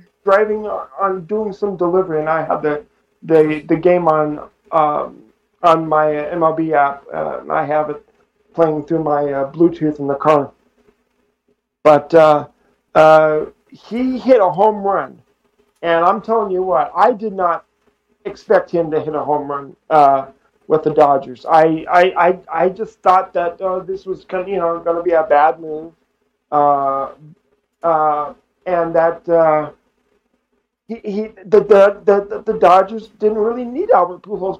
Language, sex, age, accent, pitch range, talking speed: English, male, 50-69, American, 160-215 Hz, 160 wpm